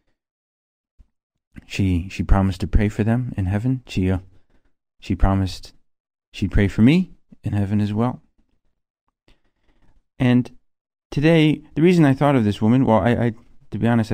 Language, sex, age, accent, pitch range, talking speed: English, male, 40-59, American, 100-125 Hz, 155 wpm